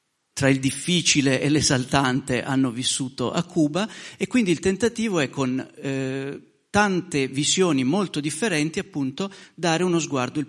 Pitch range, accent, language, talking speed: 130-165 Hz, native, Italian, 145 wpm